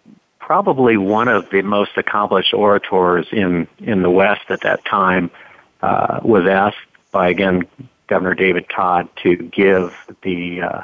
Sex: male